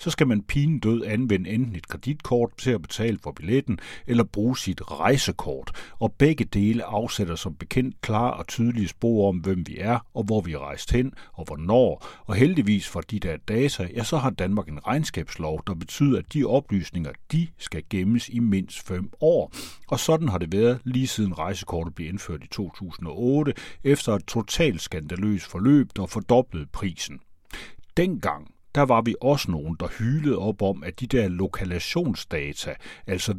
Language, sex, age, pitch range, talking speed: Danish, male, 60-79, 90-120 Hz, 175 wpm